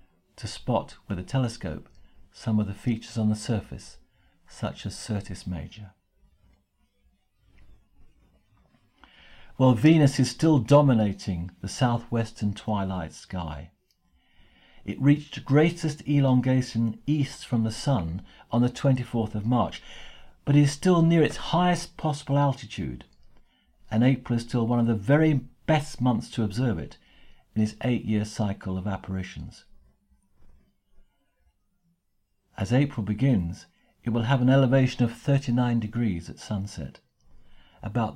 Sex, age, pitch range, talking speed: male, 50-69, 95-130 Hz, 125 wpm